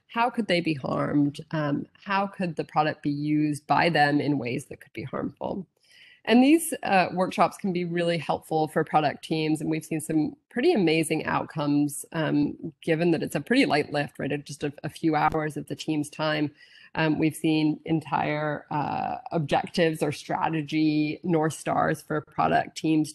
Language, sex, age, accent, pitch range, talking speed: English, female, 30-49, American, 150-170 Hz, 180 wpm